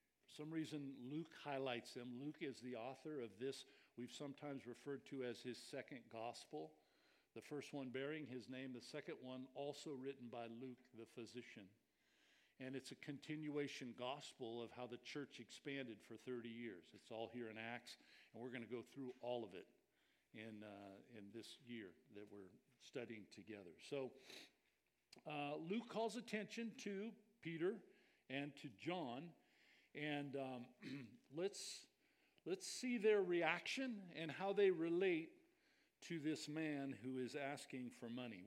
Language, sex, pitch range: English, male, 125-175 Hz